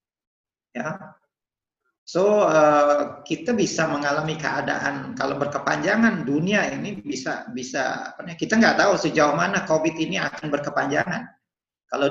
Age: 40-59